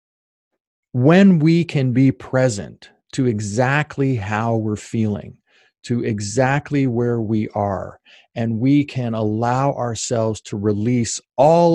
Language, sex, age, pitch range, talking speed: English, male, 40-59, 110-145 Hz, 115 wpm